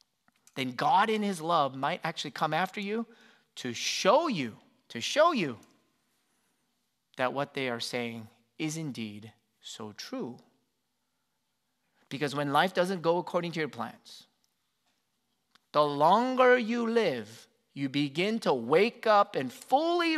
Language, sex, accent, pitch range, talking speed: English, male, American, 125-190 Hz, 135 wpm